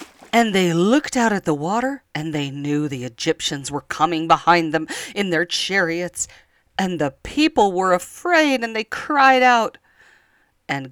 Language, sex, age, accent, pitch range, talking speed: English, female, 40-59, American, 135-195 Hz, 160 wpm